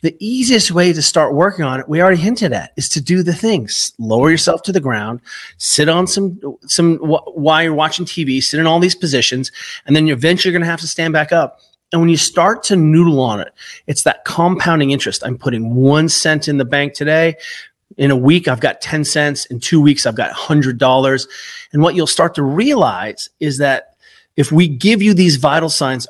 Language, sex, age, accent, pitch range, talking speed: English, male, 30-49, American, 145-190 Hz, 215 wpm